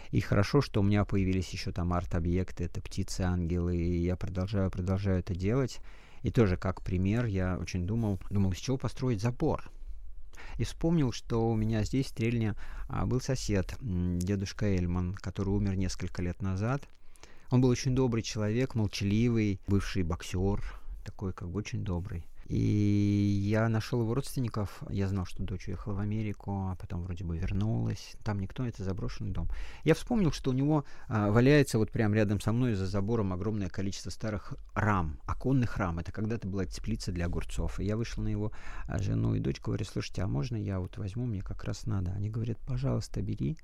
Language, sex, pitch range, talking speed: Russian, male, 95-110 Hz, 180 wpm